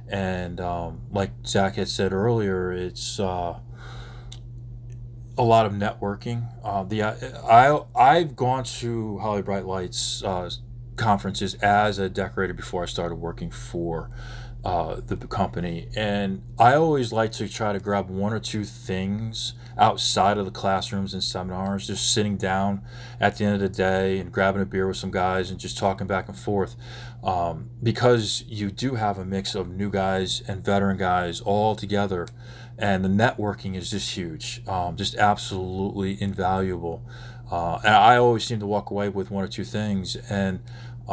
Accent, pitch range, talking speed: American, 95-120 Hz, 170 wpm